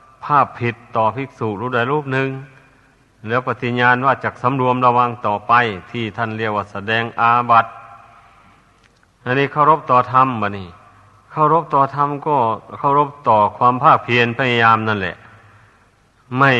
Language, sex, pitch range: Thai, male, 115-130 Hz